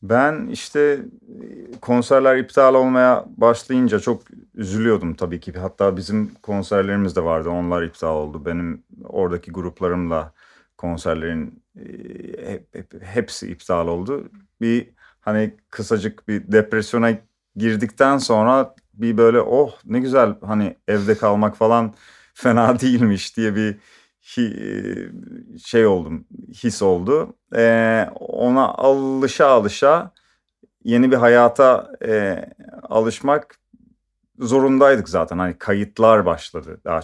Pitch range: 95-130 Hz